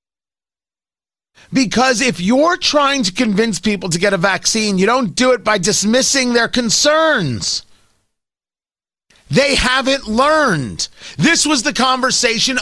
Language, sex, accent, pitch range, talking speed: English, male, American, 180-255 Hz, 125 wpm